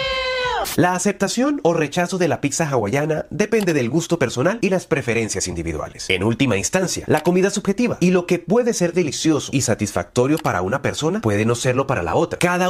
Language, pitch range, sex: Spanish, 105-170 Hz, male